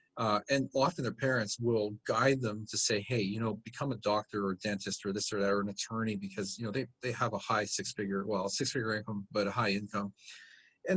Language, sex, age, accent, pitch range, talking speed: English, male, 40-59, American, 105-135 Hz, 235 wpm